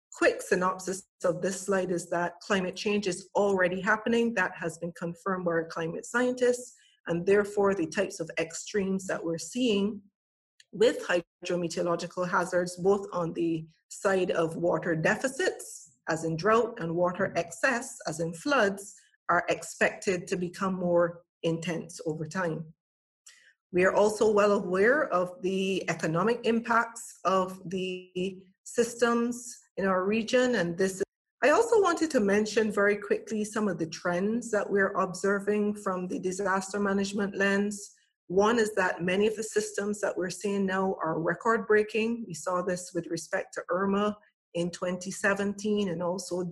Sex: female